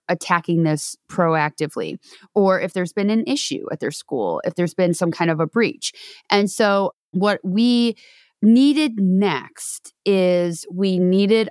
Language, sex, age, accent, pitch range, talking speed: English, female, 20-39, American, 170-215 Hz, 150 wpm